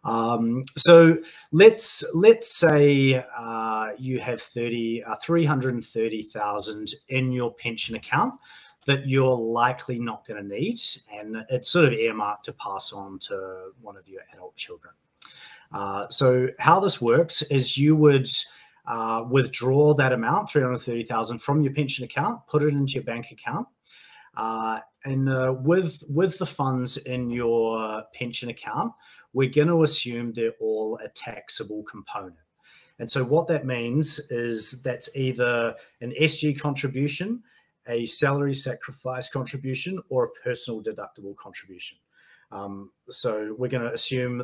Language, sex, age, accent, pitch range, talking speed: English, male, 30-49, Australian, 115-150 Hz, 140 wpm